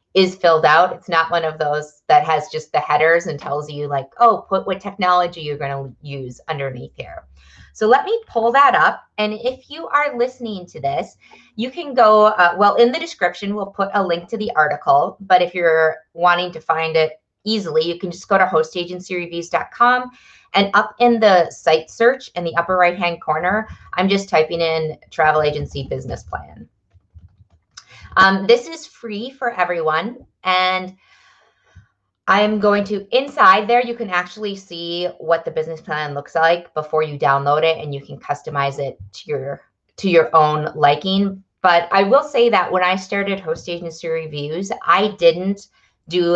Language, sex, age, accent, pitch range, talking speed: English, female, 30-49, American, 160-210 Hz, 180 wpm